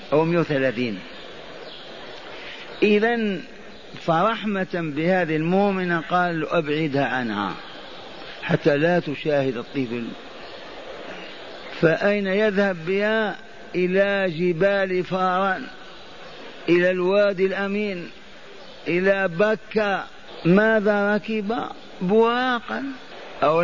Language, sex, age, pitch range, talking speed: Arabic, male, 50-69, 175-200 Hz, 70 wpm